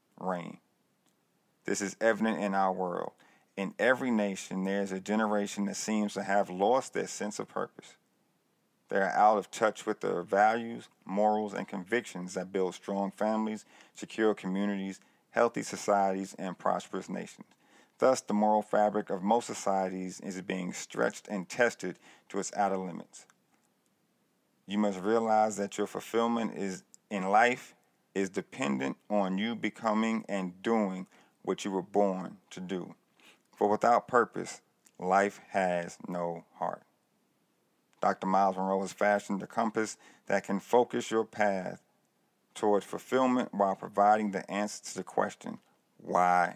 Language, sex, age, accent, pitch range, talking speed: English, male, 40-59, American, 95-105 Hz, 145 wpm